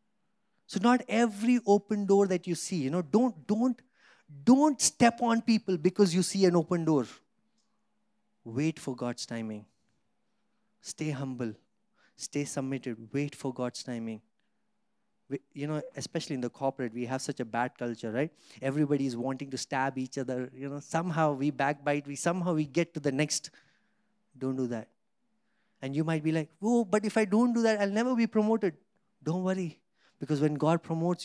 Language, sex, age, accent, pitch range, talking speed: English, male, 30-49, Indian, 145-220 Hz, 175 wpm